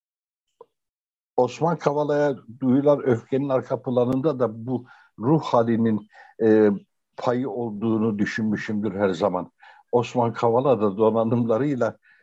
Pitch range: 110-145 Hz